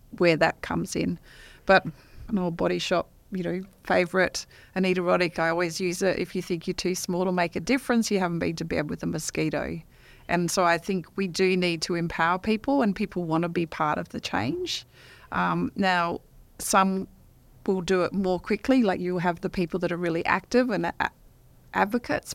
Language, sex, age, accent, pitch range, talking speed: English, female, 40-59, Australian, 175-200 Hz, 195 wpm